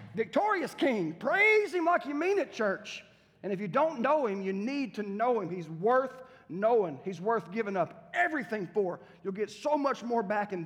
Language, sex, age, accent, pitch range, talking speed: English, male, 40-59, American, 155-210 Hz, 205 wpm